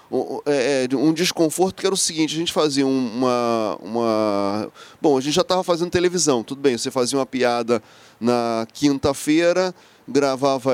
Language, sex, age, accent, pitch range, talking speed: Portuguese, male, 30-49, Brazilian, 140-180 Hz, 150 wpm